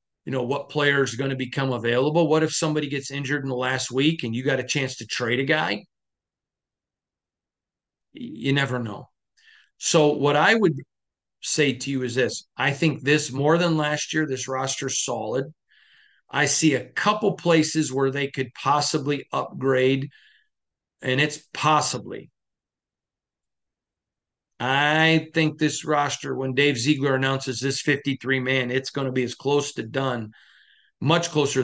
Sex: male